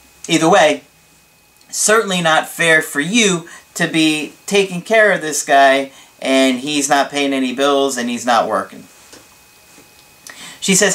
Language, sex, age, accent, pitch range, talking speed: English, male, 40-59, American, 120-170 Hz, 140 wpm